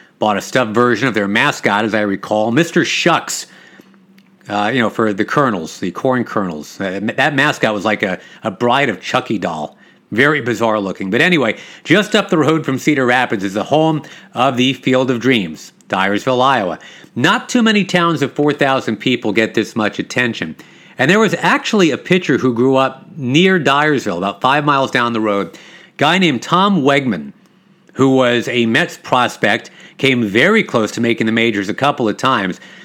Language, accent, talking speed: English, American, 190 wpm